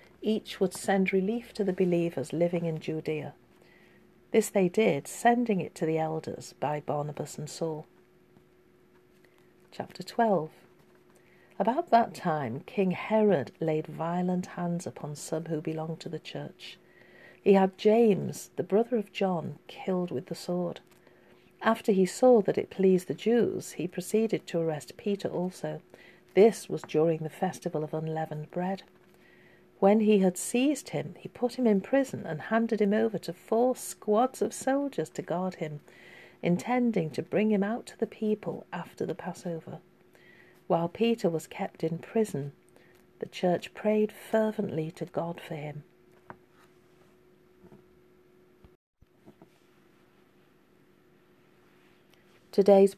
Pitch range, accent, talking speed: 160-210 Hz, British, 135 wpm